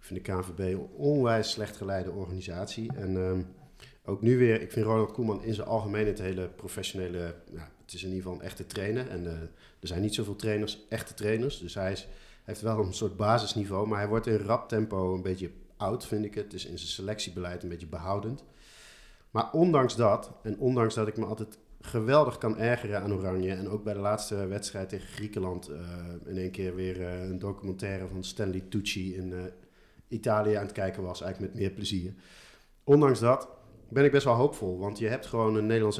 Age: 50-69